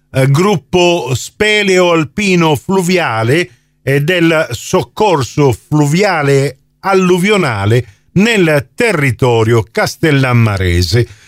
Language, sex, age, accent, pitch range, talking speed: Italian, male, 50-69, native, 135-190 Hz, 65 wpm